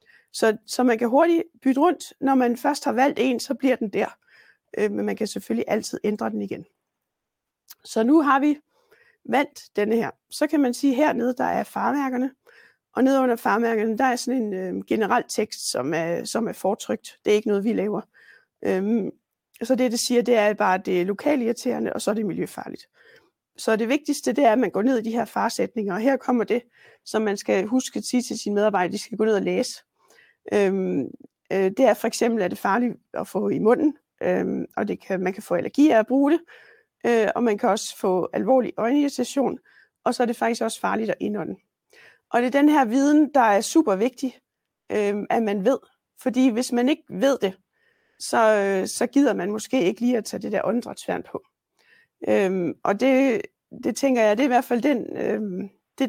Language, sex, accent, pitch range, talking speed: Danish, female, native, 210-270 Hz, 210 wpm